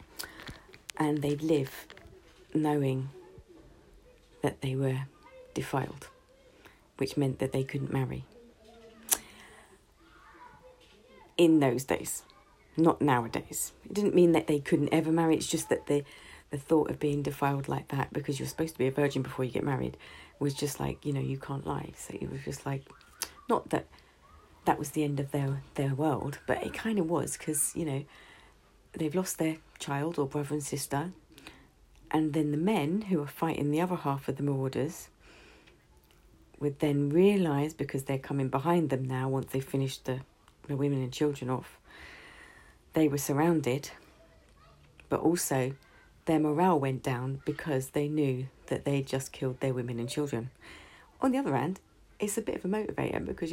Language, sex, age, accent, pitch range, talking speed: English, female, 40-59, British, 135-160 Hz, 170 wpm